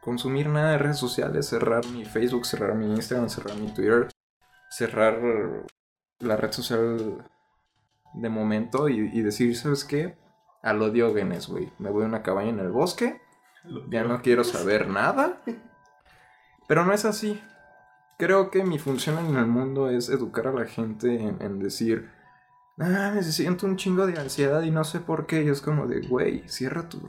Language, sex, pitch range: Spanish, male, 120-180 Hz